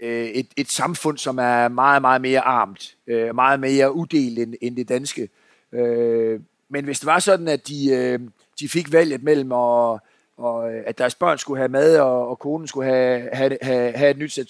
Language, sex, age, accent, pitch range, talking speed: Danish, male, 30-49, native, 125-155 Hz, 180 wpm